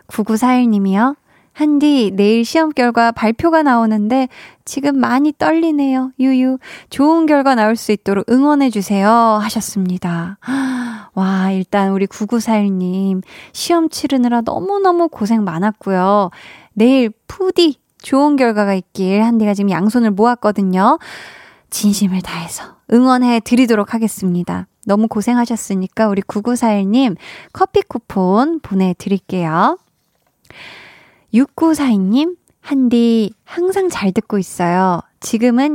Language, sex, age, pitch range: Korean, female, 20-39, 200-260 Hz